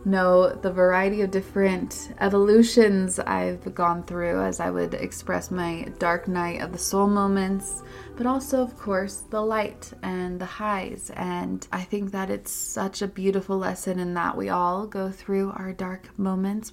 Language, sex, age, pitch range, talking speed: English, female, 20-39, 180-205 Hz, 170 wpm